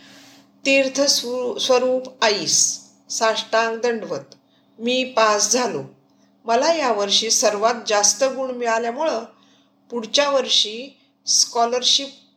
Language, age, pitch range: Marathi, 50-69, 205-265 Hz